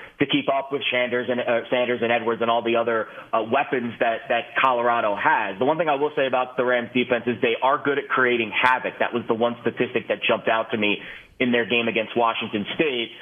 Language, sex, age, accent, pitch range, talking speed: English, male, 30-49, American, 115-135 Hz, 240 wpm